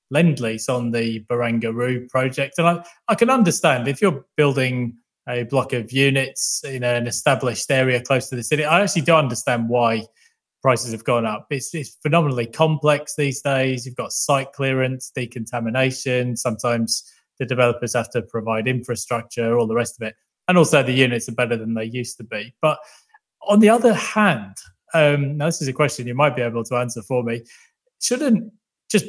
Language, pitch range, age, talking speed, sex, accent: English, 120-150 Hz, 20-39, 185 wpm, male, British